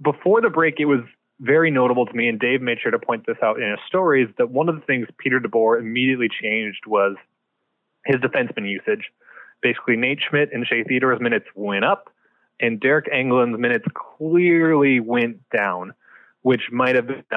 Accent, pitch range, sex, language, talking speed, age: American, 110-130 Hz, male, English, 185 wpm, 20-39